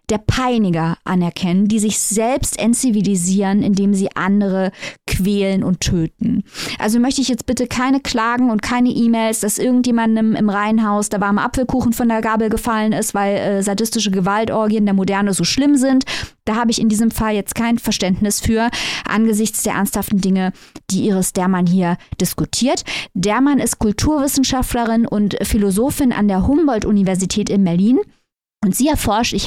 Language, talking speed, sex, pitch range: German, 160 wpm, female, 195-235 Hz